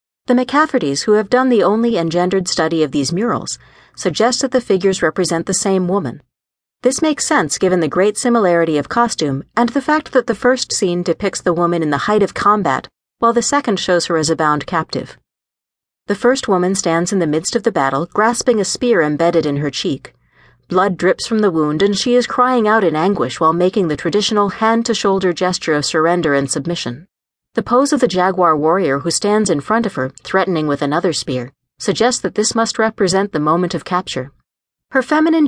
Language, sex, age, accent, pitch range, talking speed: English, female, 40-59, American, 165-230 Hz, 200 wpm